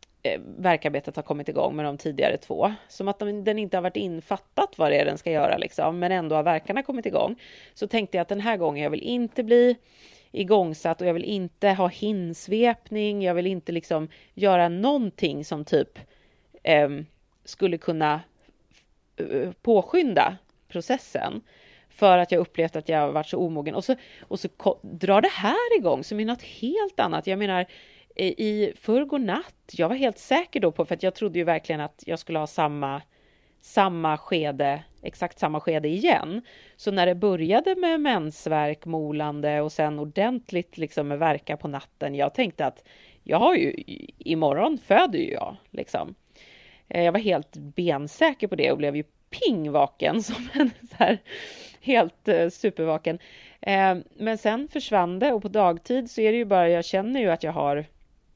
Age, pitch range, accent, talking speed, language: 30-49, 155-220 Hz, Swedish, 175 wpm, English